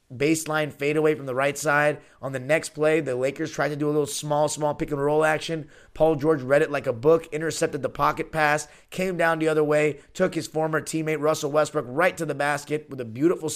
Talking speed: 235 wpm